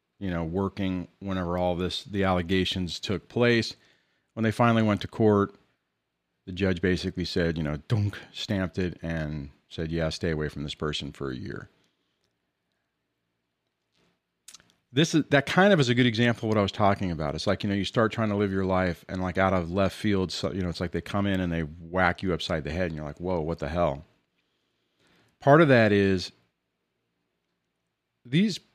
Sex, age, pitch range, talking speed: male, 40-59, 80-110 Hz, 195 wpm